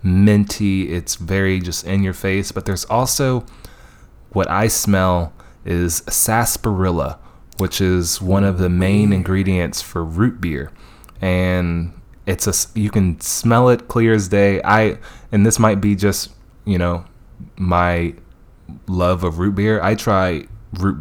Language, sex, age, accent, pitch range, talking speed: English, male, 20-39, American, 85-100 Hz, 145 wpm